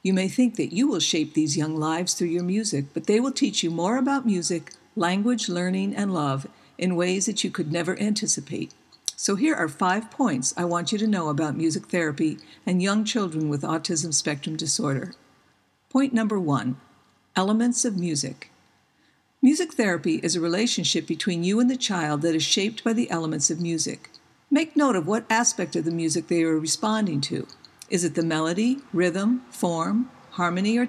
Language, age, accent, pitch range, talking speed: English, 60-79, American, 165-225 Hz, 185 wpm